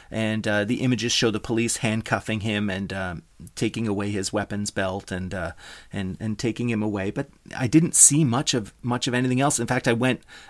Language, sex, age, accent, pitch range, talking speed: English, male, 30-49, American, 105-125 Hz, 210 wpm